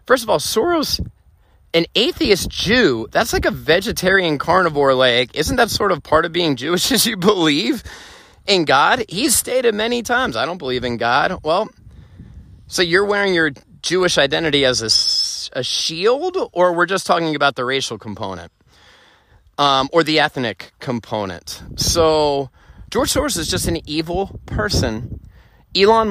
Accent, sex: American, male